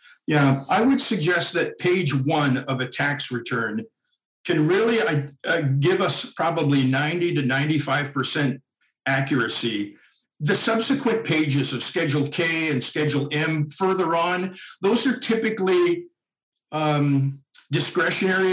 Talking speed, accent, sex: 125 wpm, American, male